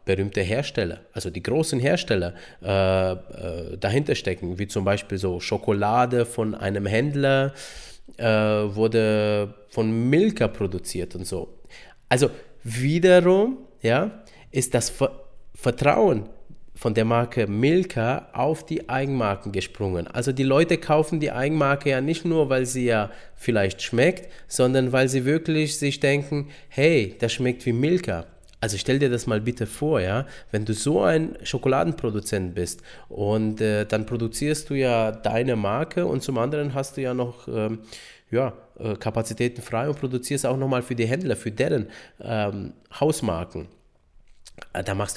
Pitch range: 100-135 Hz